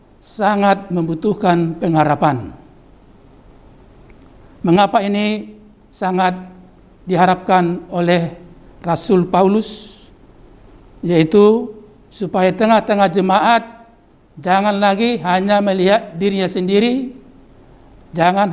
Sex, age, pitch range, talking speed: male, 60-79, 170-215 Hz, 70 wpm